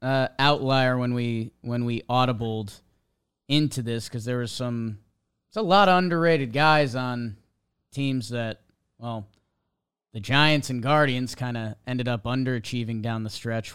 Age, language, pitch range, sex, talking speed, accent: 20-39, English, 120-145 Hz, male, 150 wpm, American